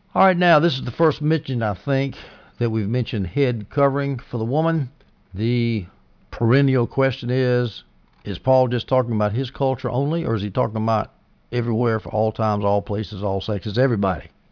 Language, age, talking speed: English, 60-79, 180 wpm